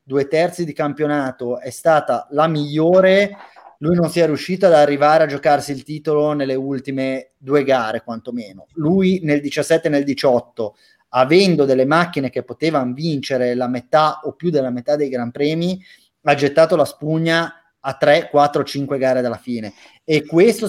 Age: 30-49